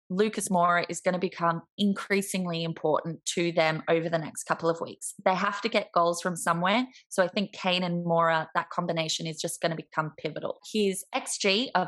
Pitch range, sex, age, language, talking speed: 165-215 Hz, female, 20-39, English, 200 wpm